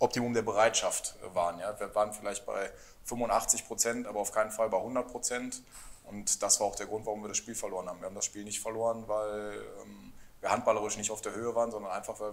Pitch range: 100-115 Hz